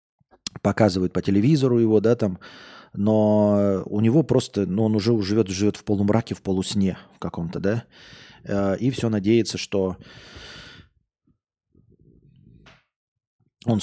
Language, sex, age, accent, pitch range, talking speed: Russian, male, 20-39, native, 100-115 Hz, 120 wpm